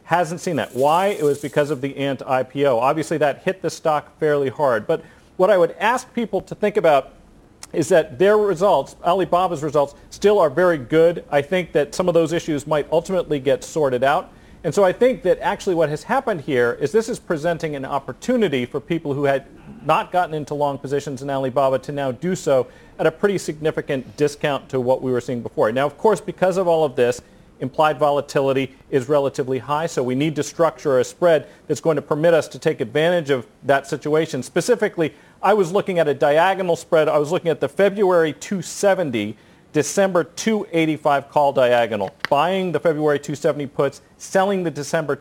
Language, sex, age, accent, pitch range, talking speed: English, male, 40-59, American, 140-180 Hz, 200 wpm